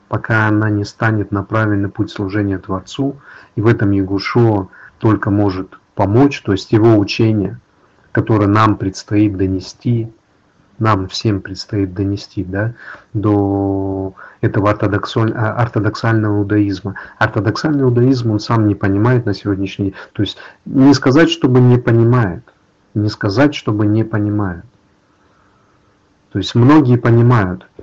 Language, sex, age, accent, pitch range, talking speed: Russian, male, 40-59, native, 100-115 Hz, 125 wpm